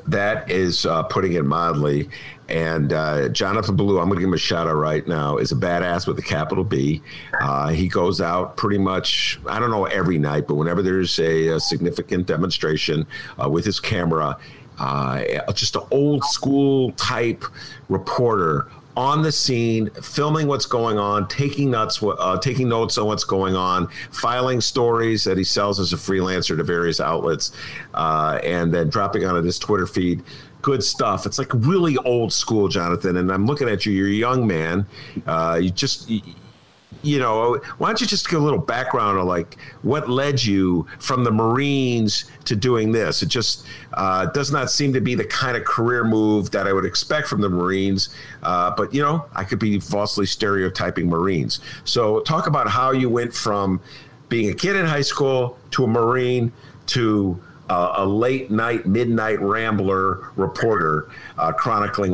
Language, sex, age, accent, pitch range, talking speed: English, male, 50-69, American, 90-130 Hz, 180 wpm